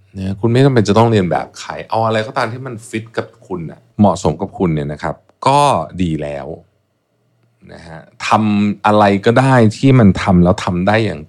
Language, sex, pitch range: Thai, male, 85-110 Hz